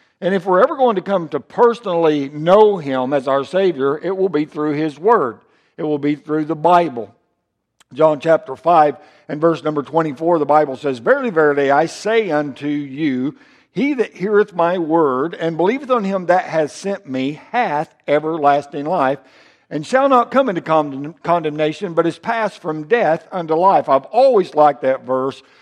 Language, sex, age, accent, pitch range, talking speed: English, male, 60-79, American, 150-200 Hz, 180 wpm